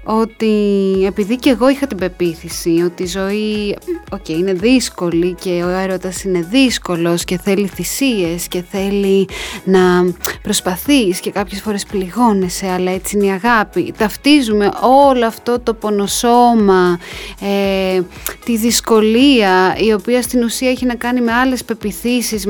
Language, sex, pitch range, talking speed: Greek, female, 195-245 Hz, 140 wpm